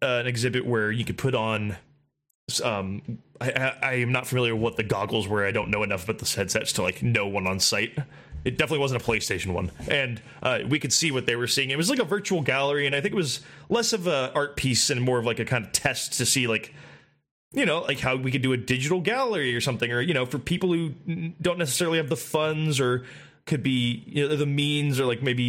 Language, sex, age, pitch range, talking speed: English, male, 20-39, 120-155 Hz, 245 wpm